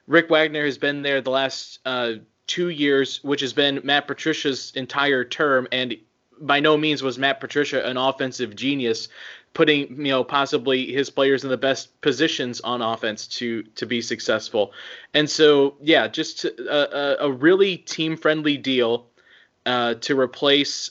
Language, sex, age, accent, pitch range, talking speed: English, male, 20-39, American, 130-155 Hz, 160 wpm